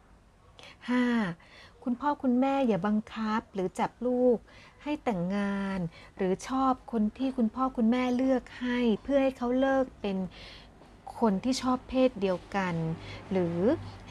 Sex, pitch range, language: female, 190-245 Hz, Thai